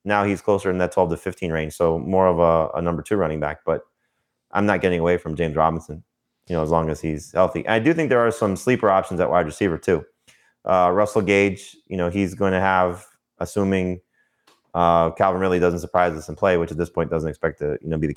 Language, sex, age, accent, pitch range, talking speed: English, male, 30-49, American, 80-95 Hz, 250 wpm